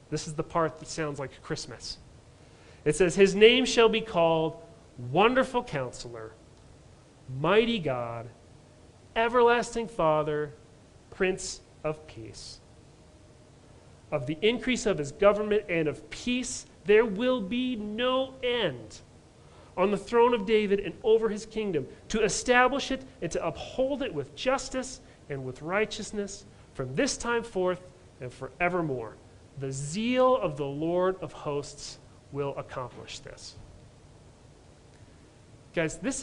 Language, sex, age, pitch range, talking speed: English, male, 40-59, 140-215 Hz, 130 wpm